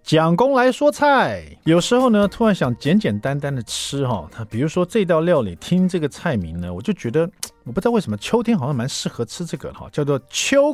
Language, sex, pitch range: Chinese, male, 115-185 Hz